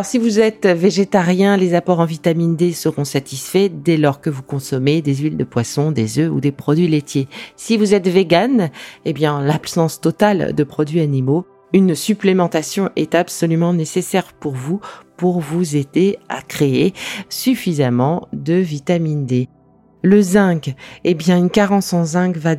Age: 40-59